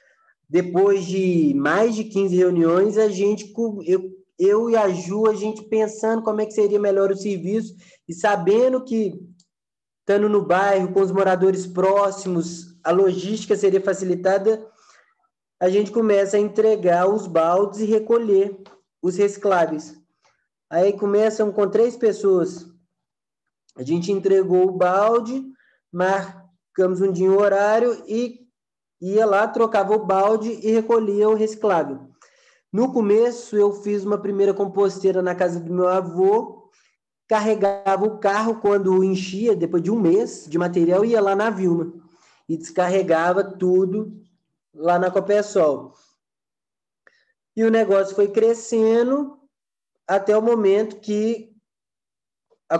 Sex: male